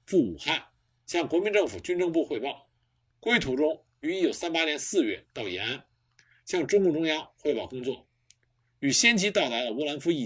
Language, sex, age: Chinese, male, 50-69